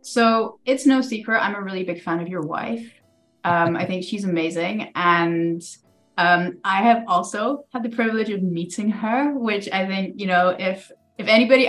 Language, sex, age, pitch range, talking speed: English, female, 20-39, 180-235 Hz, 185 wpm